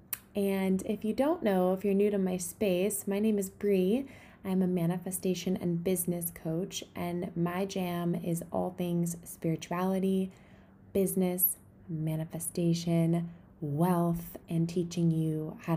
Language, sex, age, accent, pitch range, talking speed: English, female, 20-39, American, 160-195 Hz, 135 wpm